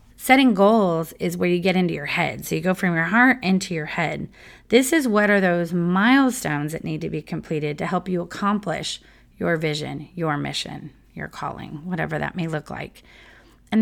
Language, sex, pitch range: English, female, 175-210 Hz